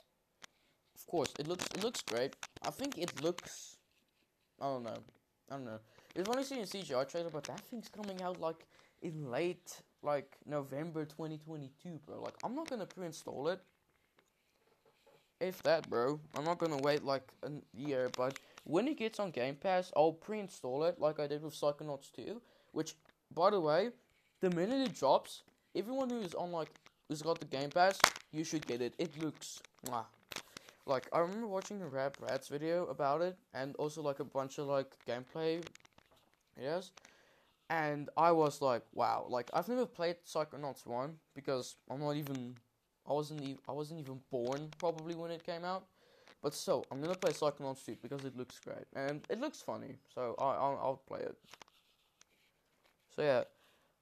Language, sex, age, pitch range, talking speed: English, male, 10-29, 140-175 Hz, 180 wpm